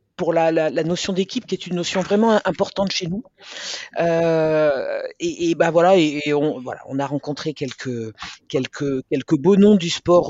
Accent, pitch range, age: French, 150-185 Hz, 50-69